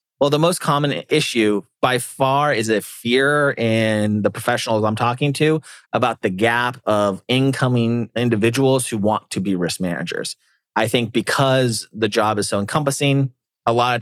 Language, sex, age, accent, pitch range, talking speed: English, male, 30-49, American, 100-120 Hz, 165 wpm